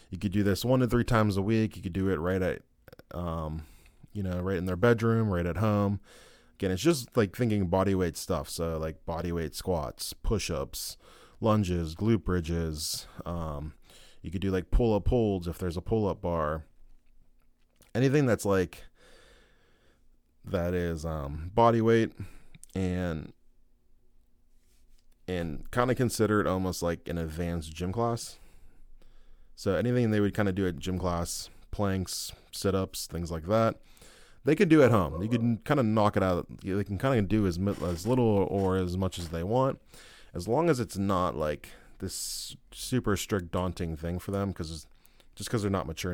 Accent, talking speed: American, 180 wpm